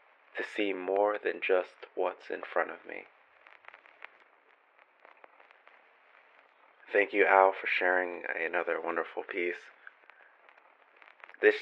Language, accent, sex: English, American, male